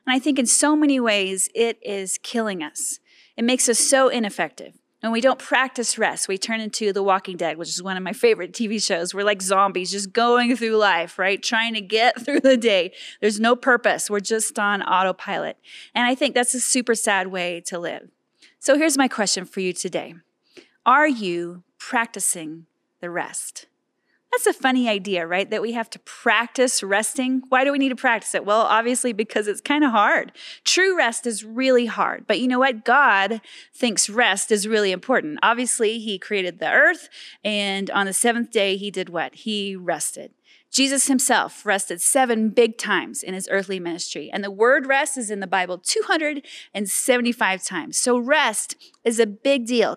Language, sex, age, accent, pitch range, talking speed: English, female, 30-49, American, 195-255 Hz, 190 wpm